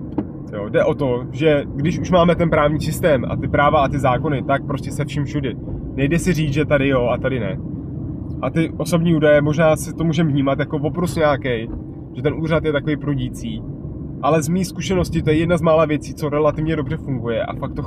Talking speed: 220 wpm